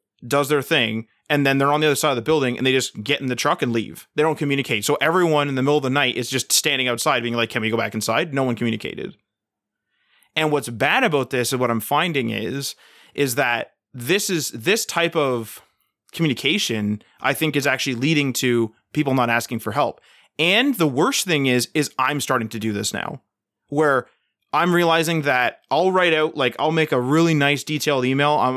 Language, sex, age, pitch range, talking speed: English, male, 20-39, 120-150 Hz, 220 wpm